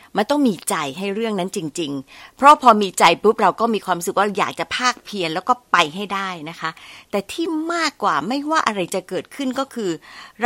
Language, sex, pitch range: Thai, female, 190-270 Hz